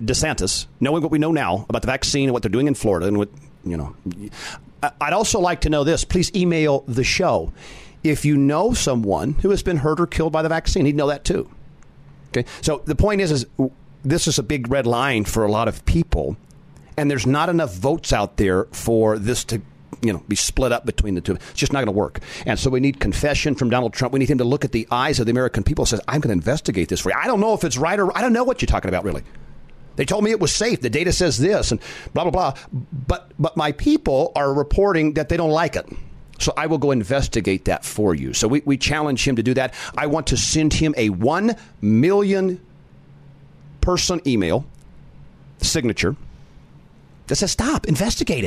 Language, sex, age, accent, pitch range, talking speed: English, male, 40-59, American, 115-160 Hz, 230 wpm